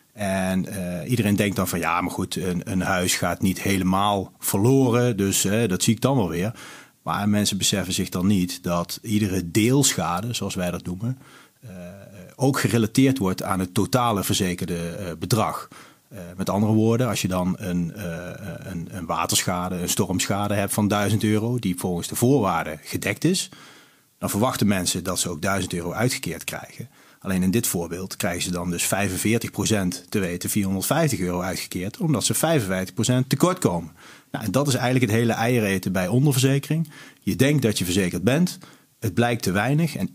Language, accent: Dutch, Dutch